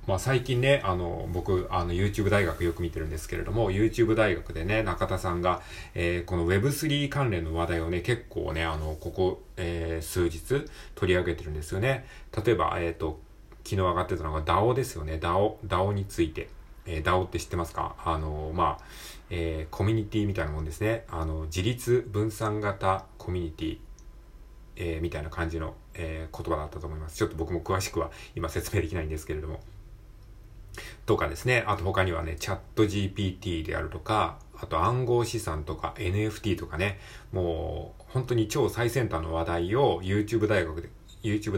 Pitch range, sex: 85-110 Hz, male